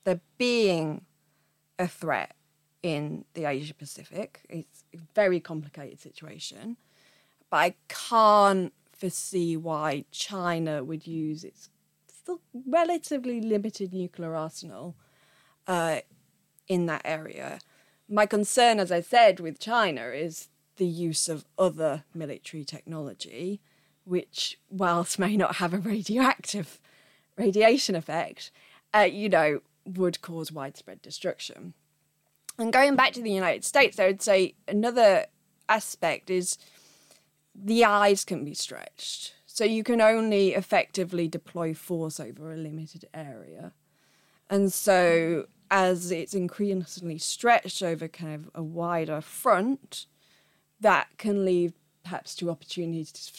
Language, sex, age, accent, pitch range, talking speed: English, female, 20-39, British, 155-210 Hz, 120 wpm